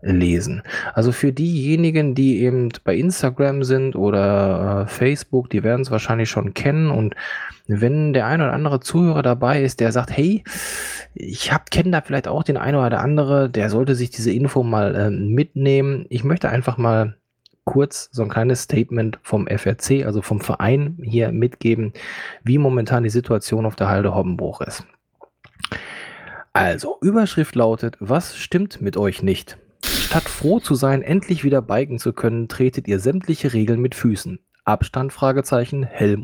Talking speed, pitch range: 160 wpm, 110-140 Hz